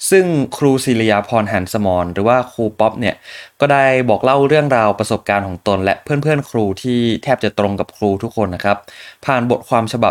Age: 20-39